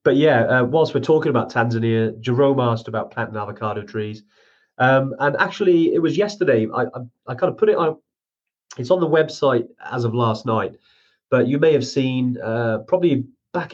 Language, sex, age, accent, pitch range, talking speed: English, male, 30-49, British, 110-130 Hz, 190 wpm